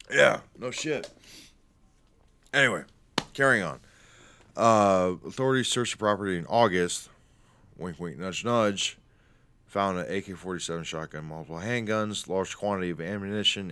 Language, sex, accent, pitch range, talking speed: English, male, American, 80-100 Hz, 120 wpm